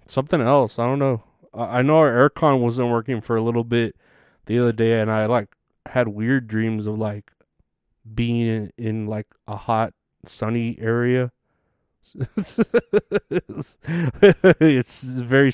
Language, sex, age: English, male, 20-39